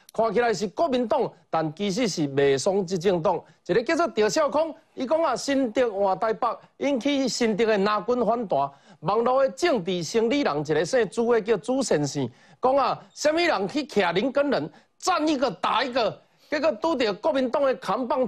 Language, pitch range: Chinese, 200-275 Hz